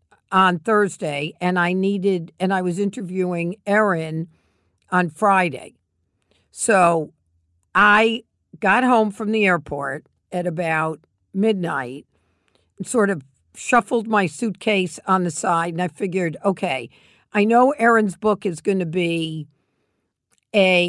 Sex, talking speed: female, 125 wpm